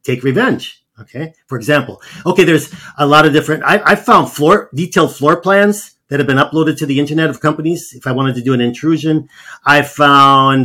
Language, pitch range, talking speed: English, 125-155 Hz, 205 wpm